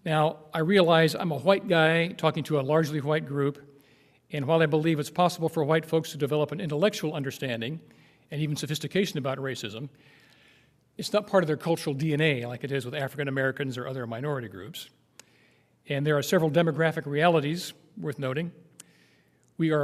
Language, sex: English, male